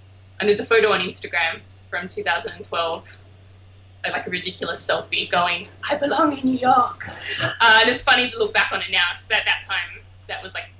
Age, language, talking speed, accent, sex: 20-39, English, 195 wpm, Australian, female